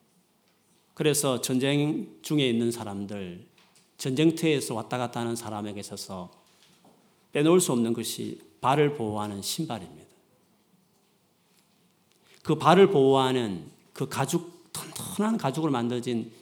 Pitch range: 120-190 Hz